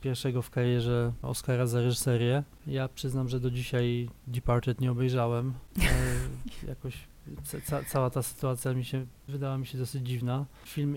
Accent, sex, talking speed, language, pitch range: native, male, 150 wpm, Polish, 125-140 Hz